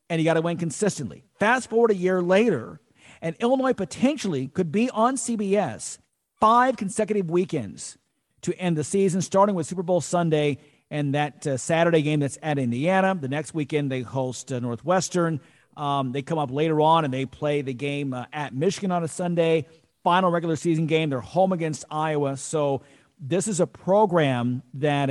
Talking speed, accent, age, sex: 180 wpm, American, 50-69, male